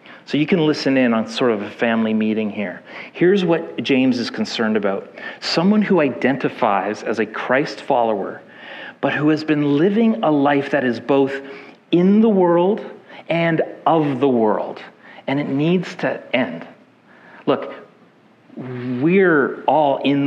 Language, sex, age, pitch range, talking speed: English, male, 40-59, 130-180 Hz, 150 wpm